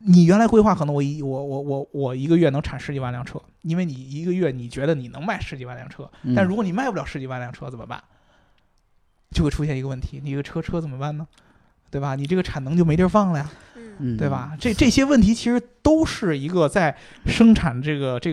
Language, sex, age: Chinese, male, 20-39